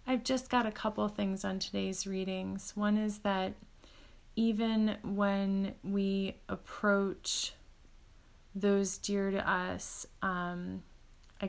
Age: 30-49